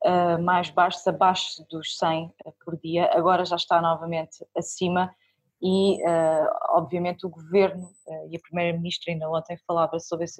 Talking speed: 160 wpm